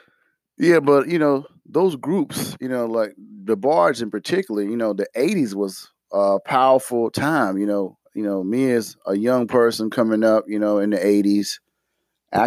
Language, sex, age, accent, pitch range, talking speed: English, male, 30-49, American, 105-120 Hz, 185 wpm